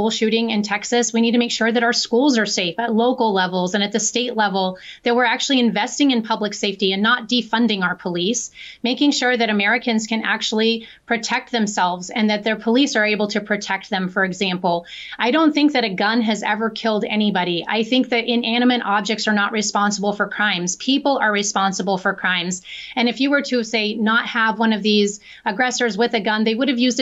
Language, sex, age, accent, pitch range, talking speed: English, female, 30-49, American, 205-235 Hz, 215 wpm